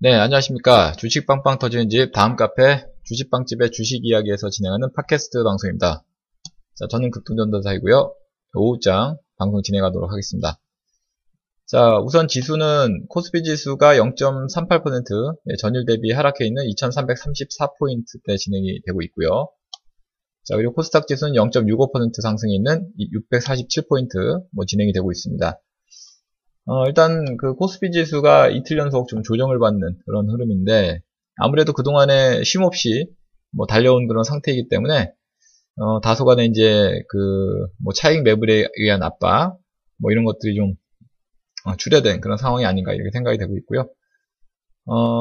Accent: native